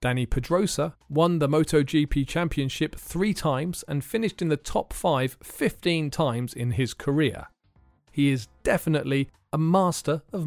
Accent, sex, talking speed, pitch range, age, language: British, male, 145 wpm, 115-165 Hz, 40-59, English